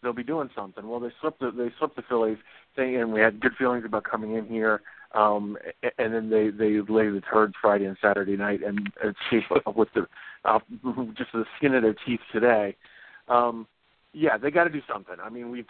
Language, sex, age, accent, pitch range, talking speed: English, male, 40-59, American, 105-120 Hz, 210 wpm